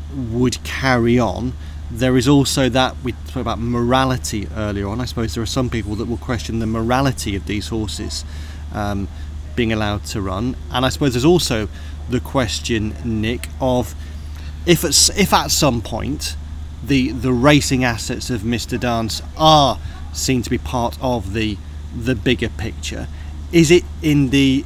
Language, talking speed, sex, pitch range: English, 160 wpm, male, 80-130 Hz